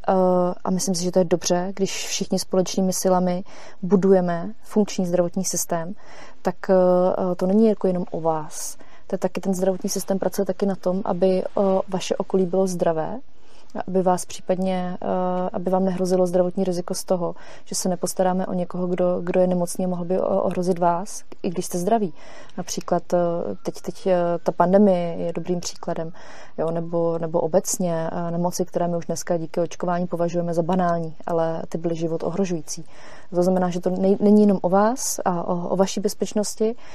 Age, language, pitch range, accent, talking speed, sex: 30-49, Czech, 175-195 Hz, native, 170 wpm, female